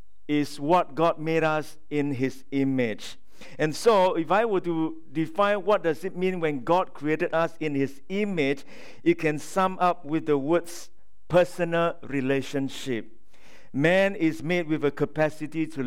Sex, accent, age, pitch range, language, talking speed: male, Malaysian, 50-69, 140-180 Hz, English, 160 wpm